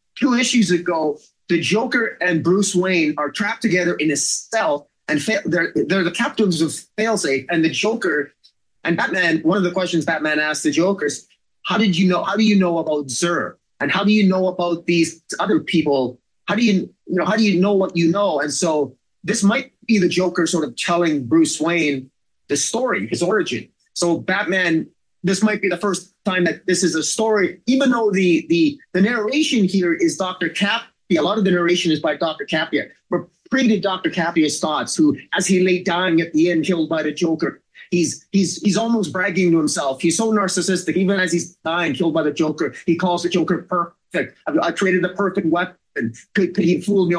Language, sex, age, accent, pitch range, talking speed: English, male, 30-49, American, 165-200 Hz, 210 wpm